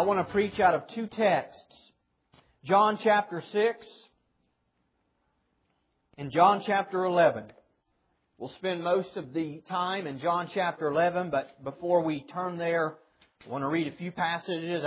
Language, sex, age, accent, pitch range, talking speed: English, male, 40-59, American, 170-230 Hz, 150 wpm